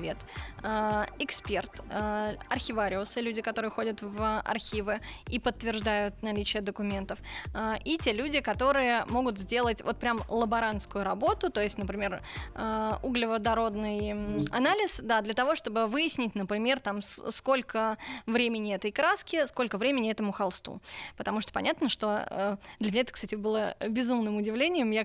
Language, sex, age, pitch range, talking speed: Russian, female, 20-39, 210-240 Hz, 125 wpm